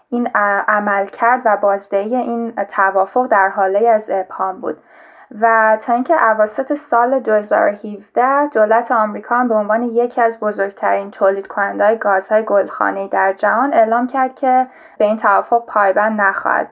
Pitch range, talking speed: 205-245 Hz, 140 wpm